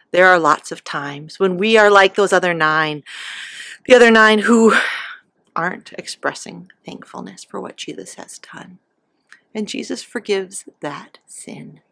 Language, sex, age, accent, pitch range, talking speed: English, female, 40-59, American, 185-260 Hz, 145 wpm